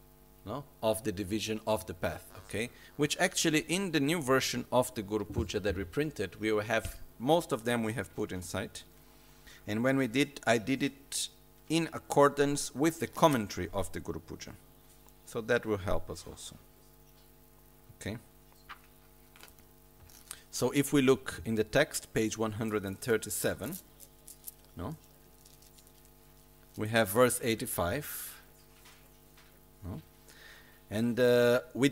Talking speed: 135 wpm